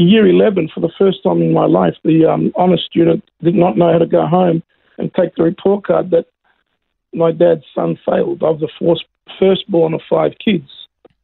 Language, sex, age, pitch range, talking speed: English, male, 50-69, 175-210 Hz, 205 wpm